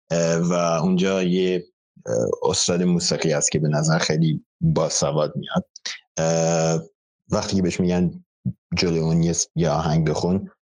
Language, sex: Persian, male